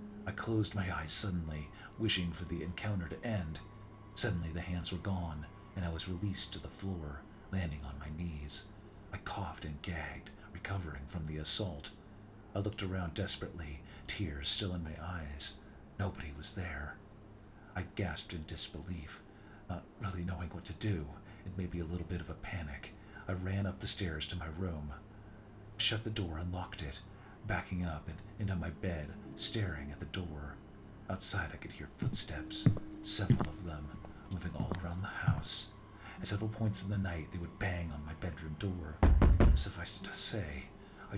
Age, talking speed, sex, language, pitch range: 50-69, 175 wpm, male, English, 80-100 Hz